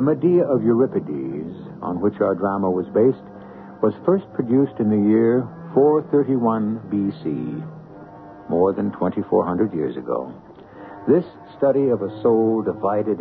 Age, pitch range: 60-79, 100-140 Hz